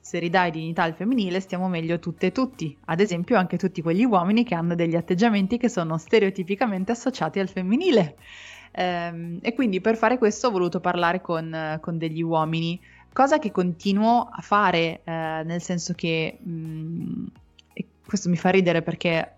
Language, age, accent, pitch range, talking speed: Italian, 20-39, native, 170-200 Hz, 165 wpm